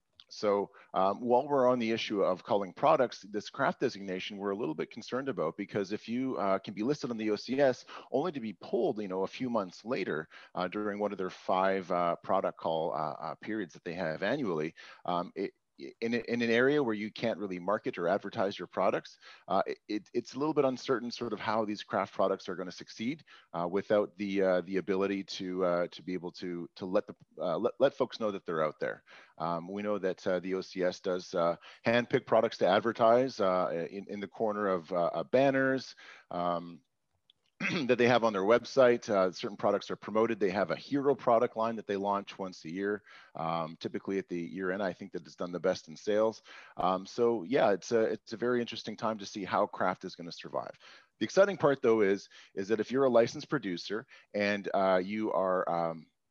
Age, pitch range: 40-59, 95-115 Hz